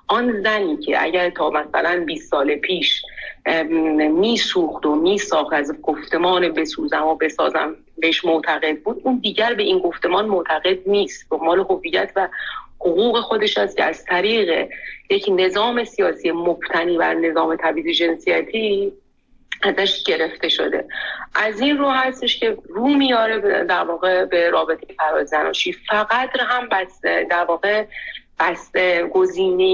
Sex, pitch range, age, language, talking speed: female, 170-230 Hz, 30-49, Persian, 145 wpm